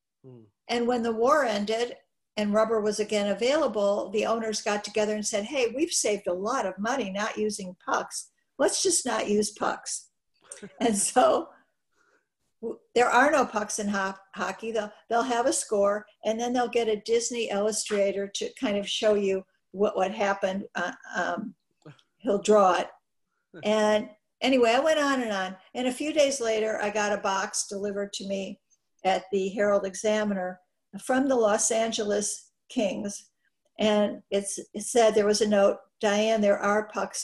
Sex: female